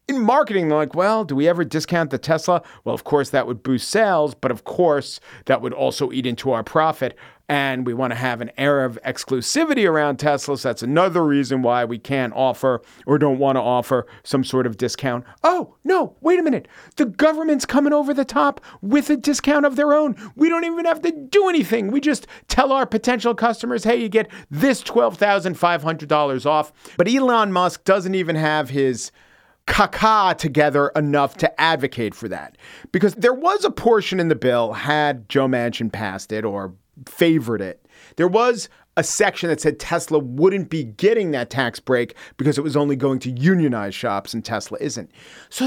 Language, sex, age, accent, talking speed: English, male, 50-69, American, 190 wpm